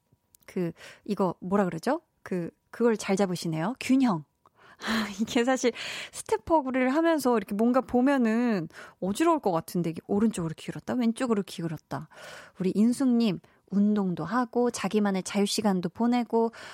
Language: Korean